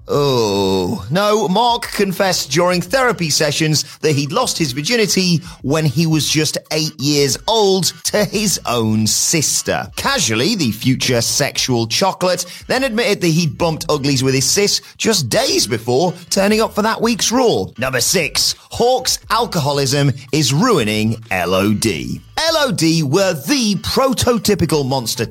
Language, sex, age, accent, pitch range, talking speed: English, male, 30-49, British, 125-195 Hz, 140 wpm